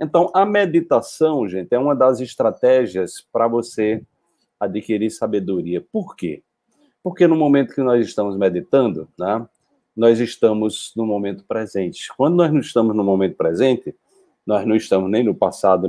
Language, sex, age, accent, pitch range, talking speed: Portuguese, male, 40-59, Brazilian, 105-150 Hz, 150 wpm